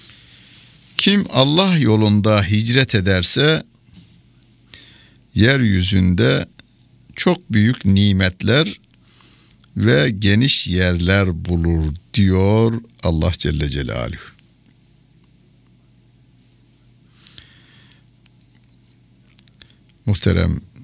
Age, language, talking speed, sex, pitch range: 60-79, Turkish, 50 wpm, male, 85-115 Hz